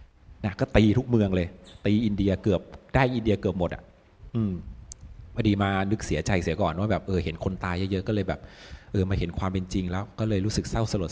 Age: 20-39